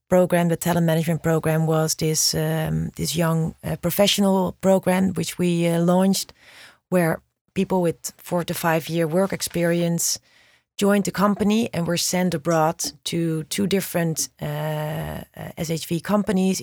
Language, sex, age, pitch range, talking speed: English, female, 40-59, 160-185 Hz, 140 wpm